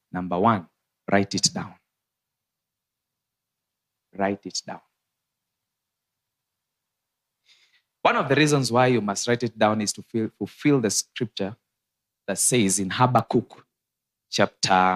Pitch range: 105-145 Hz